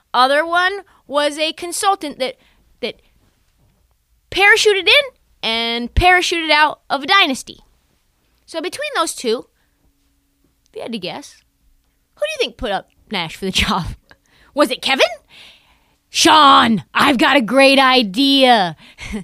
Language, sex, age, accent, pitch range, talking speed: English, female, 20-39, American, 260-390 Hz, 135 wpm